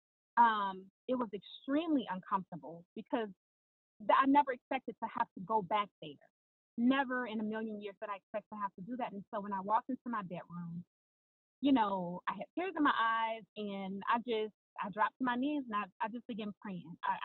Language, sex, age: English, female, 30-49